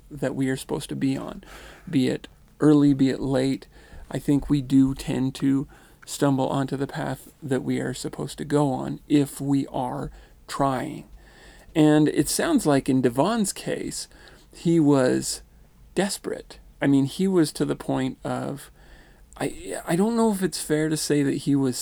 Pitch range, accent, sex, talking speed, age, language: 135-160 Hz, American, male, 175 wpm, 40-59, English